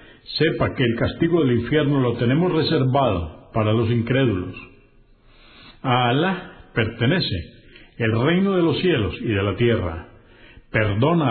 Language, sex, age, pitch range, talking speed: Spanish, male, 60-79, 110-140 Hz, 135 wpm